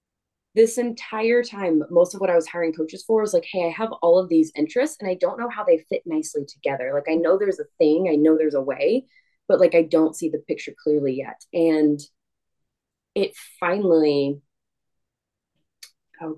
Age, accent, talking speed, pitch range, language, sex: 20-39, American, 195 wpm, 150-195 Hz, English, female